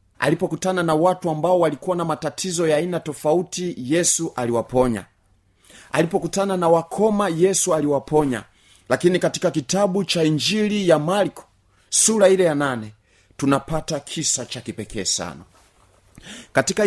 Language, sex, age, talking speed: Swahili, male, 30-49, 120 wpm